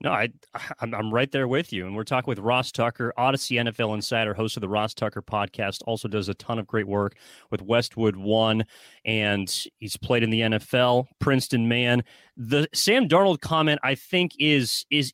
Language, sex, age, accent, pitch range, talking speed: English, male, 30-49, American, 115-140 Hz, 195 wpm